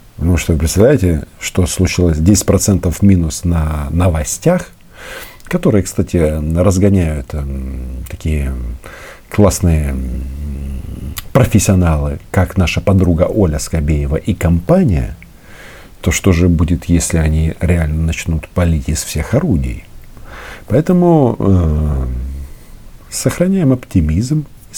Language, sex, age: Russian, male, 50-69